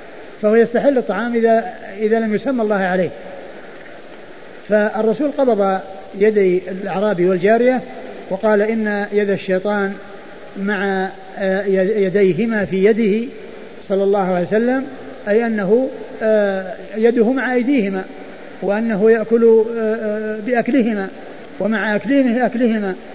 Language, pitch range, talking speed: Arabic, 195-220 Hz, 95 wpm